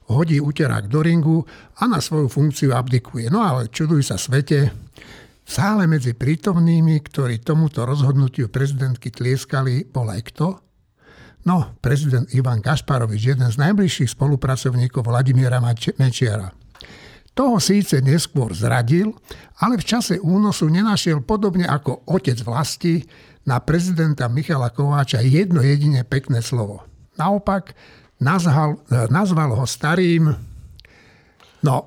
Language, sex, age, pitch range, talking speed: Slovak, male, 60-79, 125-160 Hz, 115 wpm